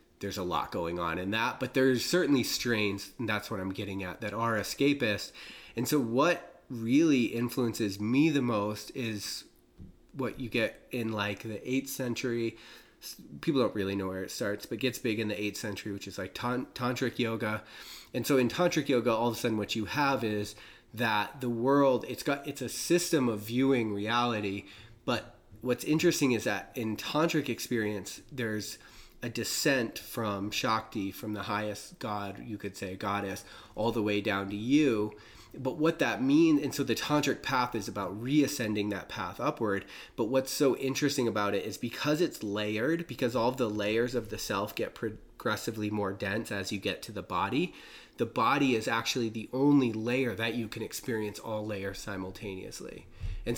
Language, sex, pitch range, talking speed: English, male, 105-125 Hz, 185 wpm